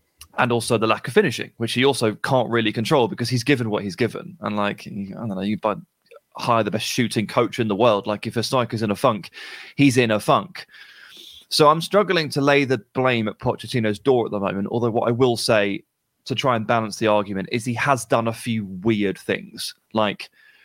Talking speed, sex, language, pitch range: 225 wpm, male, English, 110-140 Hz